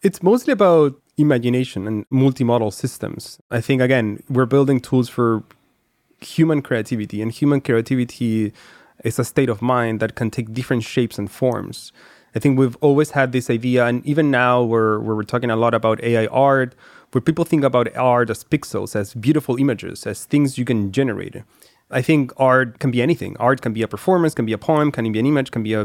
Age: 30-49